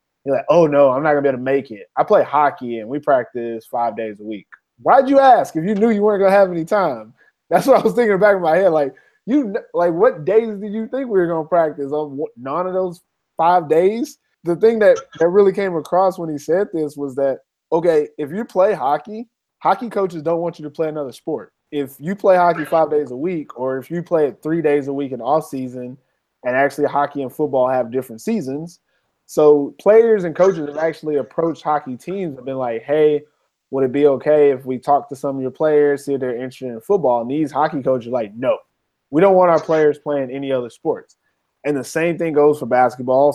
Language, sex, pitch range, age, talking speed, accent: English, male, 135-175 Hz, 20-39, 245 wpm, American